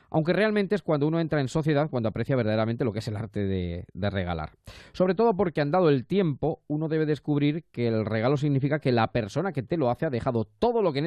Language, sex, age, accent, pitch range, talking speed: Spanish, male, 20-39, Spanish, 105-145 Hz, 250 wpm